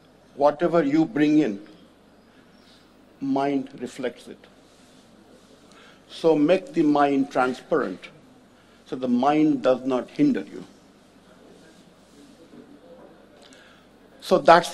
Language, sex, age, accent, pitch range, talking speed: English, male, 60-79, Indian, 140-205 Hz, 85 wpm